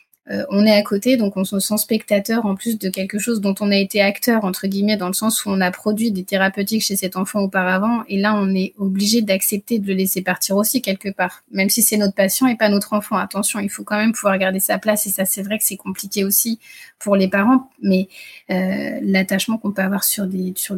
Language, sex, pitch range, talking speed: French, female, 190-215 Hz, 245 wpm